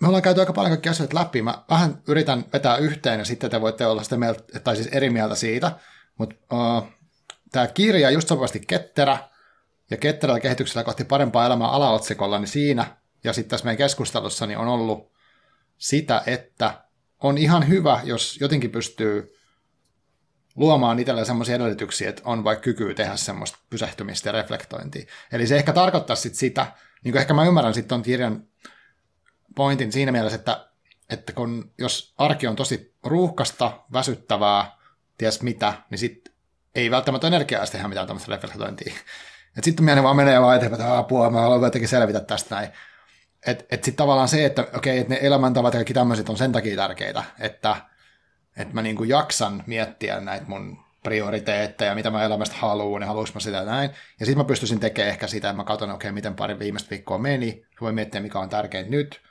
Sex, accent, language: male, native, Finnish